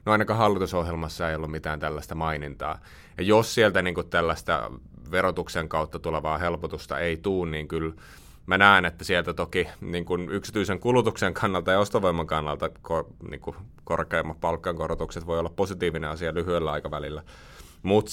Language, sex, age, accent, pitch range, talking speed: Finnish, male, 30-49, native, 80-90 Hz, 140 wpm